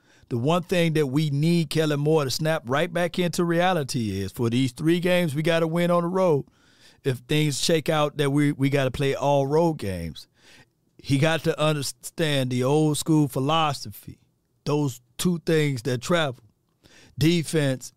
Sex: male